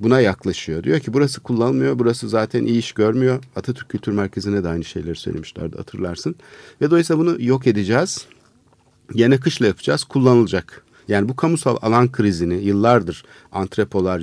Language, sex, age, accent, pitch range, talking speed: Turkish, male, 50-69, native, 105-135 Hz, 150 wpm